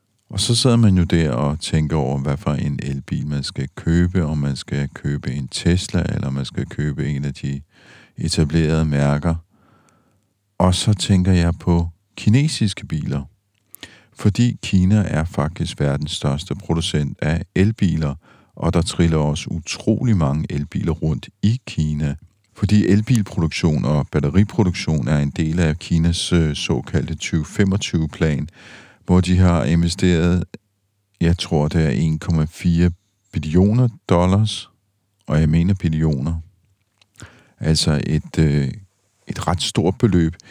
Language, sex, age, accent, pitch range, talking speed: Danish, male, 50-69, native, 80-100 Hz, 135 wpm